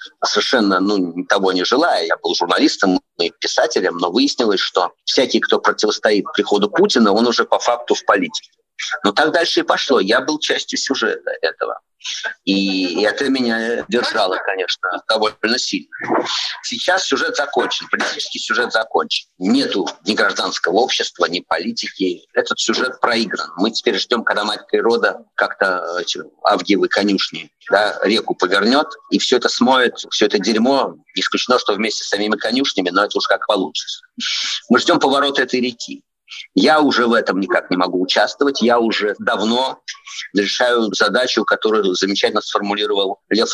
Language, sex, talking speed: Russian, male, 150 wpm